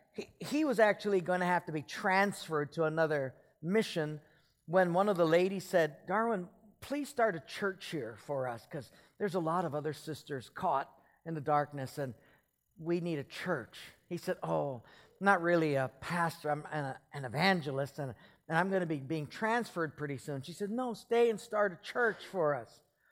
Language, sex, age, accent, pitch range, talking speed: English, male, 50-69, American, 150-205 Hz, 185 wpm